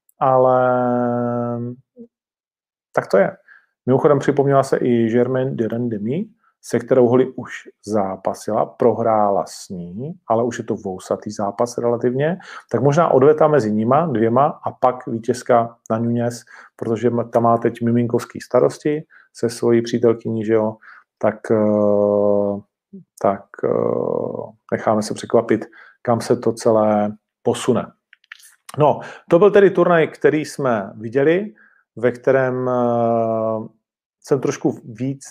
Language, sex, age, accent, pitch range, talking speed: Czech, male, 40-59, native, 115-140 Hz, 120 wpm